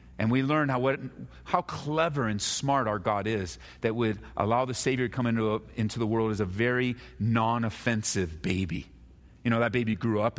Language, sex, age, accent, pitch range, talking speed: English, male, 40-59, American, 100-145 Hz, 190 wpm